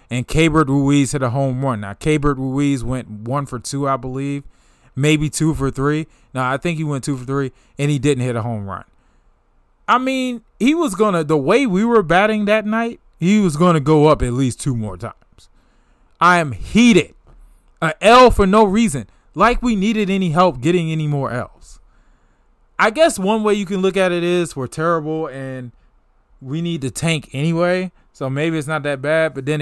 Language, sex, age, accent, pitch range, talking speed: English, male, 20-39, American, 130-170 Hz, 205 wpm